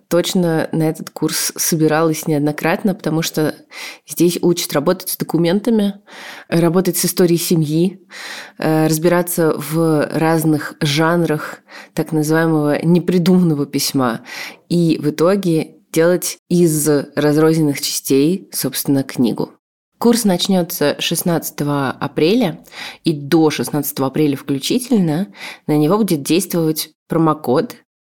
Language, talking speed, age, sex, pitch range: Russian, 105 wpm, 20-39, female, 150-175 Hz